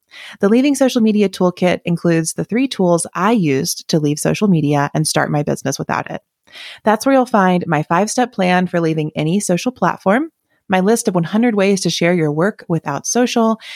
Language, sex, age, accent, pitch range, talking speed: English, female, 30-49, American, 160-220 Hz, 190 wpm